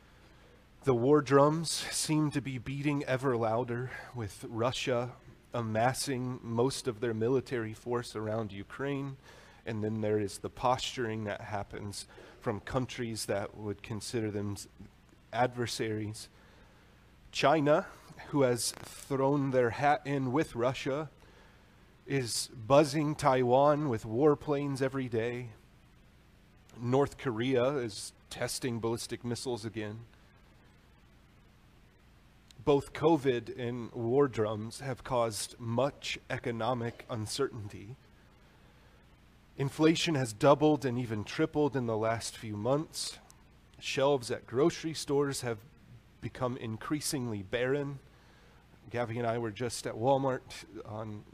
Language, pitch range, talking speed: English, 110-135 Hz, 110 wpm